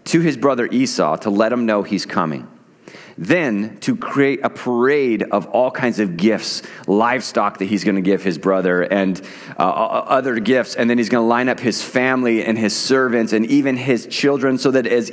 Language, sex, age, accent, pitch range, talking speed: English, male, 30-49, American, 100-135 Hz, 200 wpm